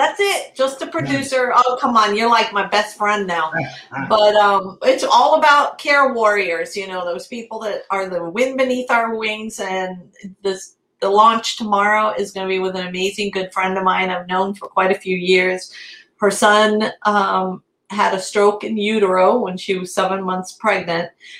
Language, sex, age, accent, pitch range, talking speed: English, female, 40-59, American, 180-210 Hz, 190 wpm